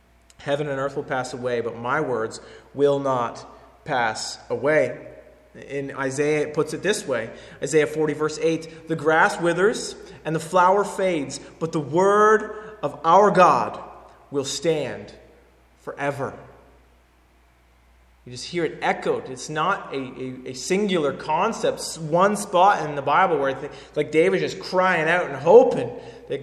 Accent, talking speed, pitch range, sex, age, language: American, 155 wpm, 125-170 Hz, male, 30-49, English